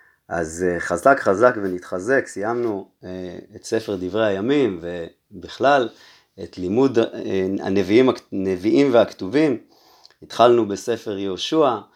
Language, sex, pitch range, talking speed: Hebrew, male, 90-115 Hz, 100 wpm